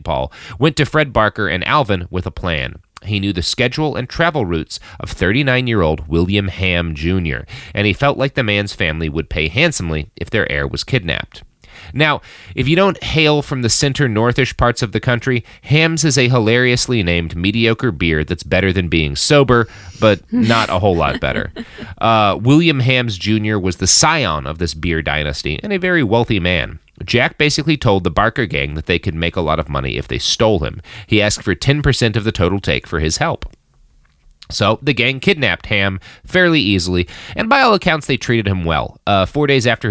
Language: English